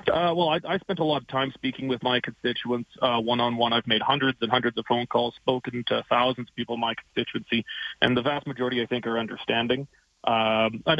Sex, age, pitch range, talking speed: male, 30-49, 115-130 Hz, 220 wpm